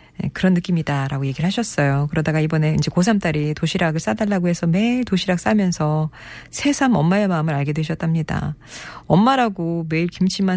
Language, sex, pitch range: Korean, female, 155-215 Hz